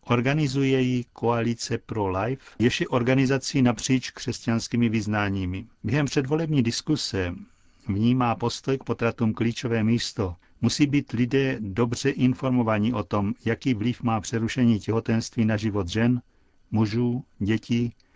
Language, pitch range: Czech, 110-125 Hz